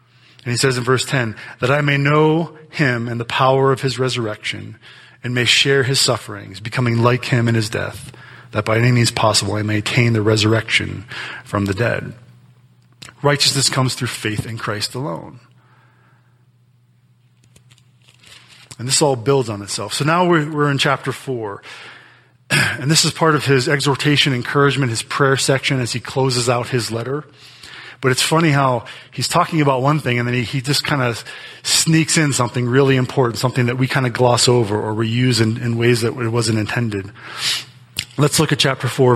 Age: 30-49